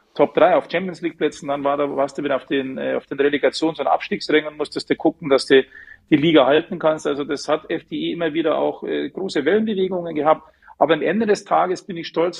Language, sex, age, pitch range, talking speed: German, male, 40-59, 150-185 Hz, 210 wpm